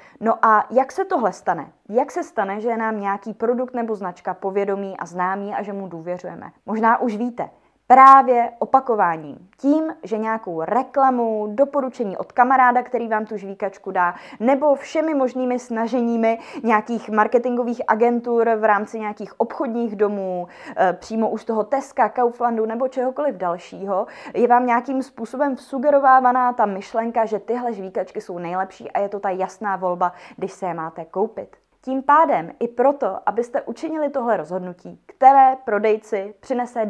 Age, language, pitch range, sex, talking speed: 20-39, Czech, 210-250 Hz, female, 150 wpm